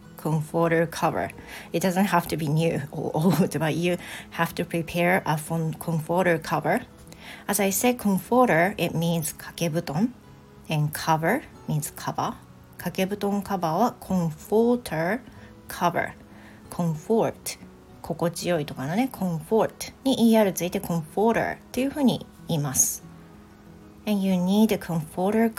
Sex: female